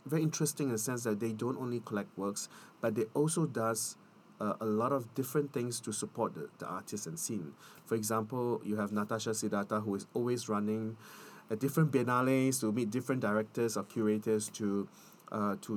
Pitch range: 105-125 Hz